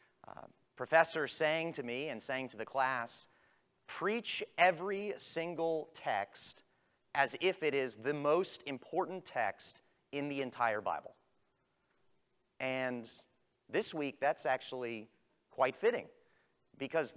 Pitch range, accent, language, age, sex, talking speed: 130-165 Hz, American, English, 30-49, male, 120 wpm